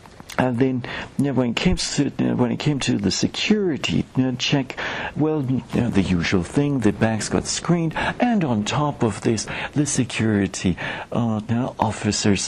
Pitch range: 105-140 Hz